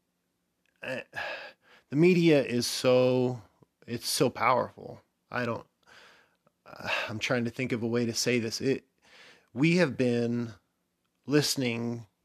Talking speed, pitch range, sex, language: 120 wpm, 110-130 Hz, male, English